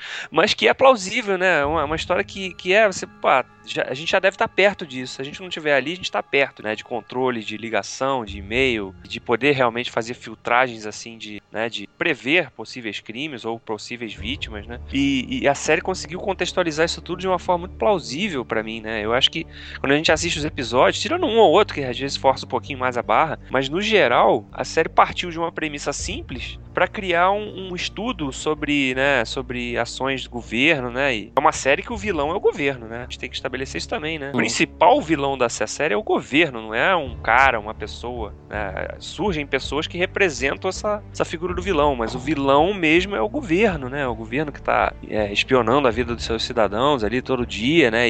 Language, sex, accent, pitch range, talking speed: Portuguese, male, Brazilian, 115-170 Hz, 225 wpm